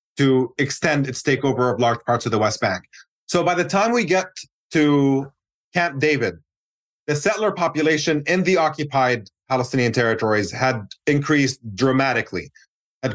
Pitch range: 120-150 Hz